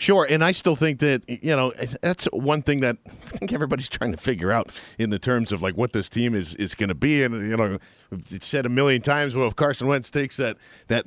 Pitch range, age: 120-155 Hz, 40-59